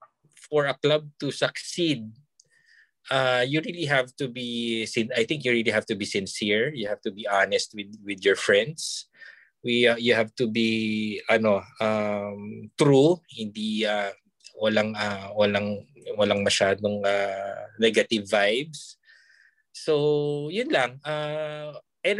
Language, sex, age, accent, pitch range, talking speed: Filipino, male, 20-39, native, 110-145 Hz, 140 wpm